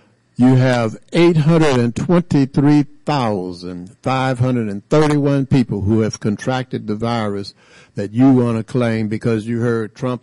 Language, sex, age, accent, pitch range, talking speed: English, male, 60-79, American, 105-135 Hz, 105 wpm